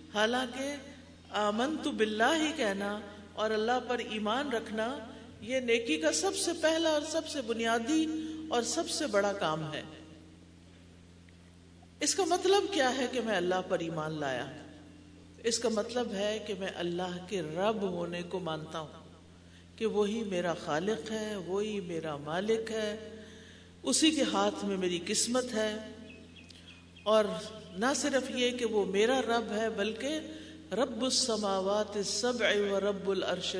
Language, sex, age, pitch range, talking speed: Urdu, female, 50-69, 185-250 Hz, 150 wpm